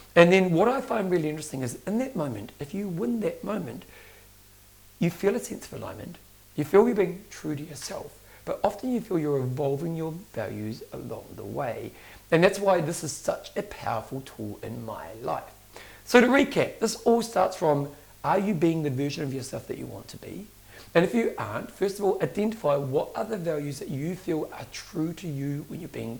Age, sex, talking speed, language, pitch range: 40-59, male, 210 wpm, English, 135-185 Hz